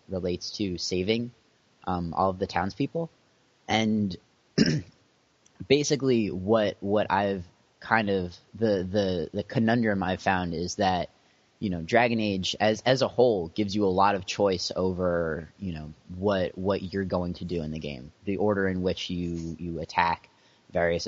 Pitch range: 90-105 Hz